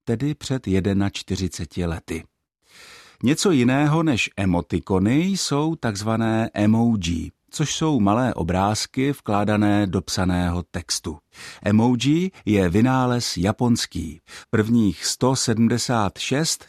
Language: Czech